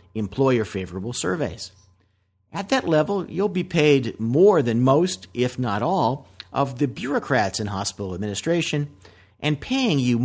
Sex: male